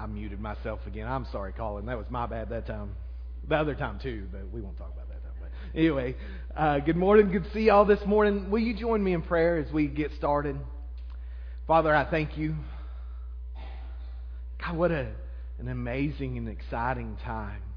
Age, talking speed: 30-49, 185 wpm